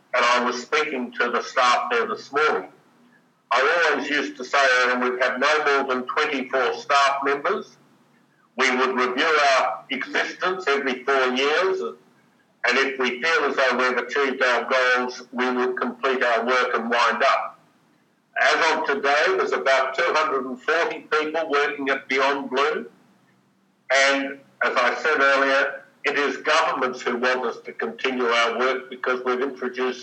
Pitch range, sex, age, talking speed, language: 125-140 Hz, male, 60-79, 160 wpm, English